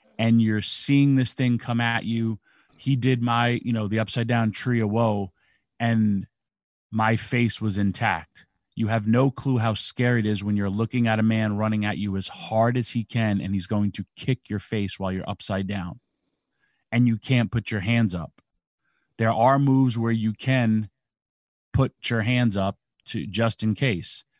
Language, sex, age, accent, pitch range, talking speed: English, male, 30-49, American, 105-130 Hz, 190 wpm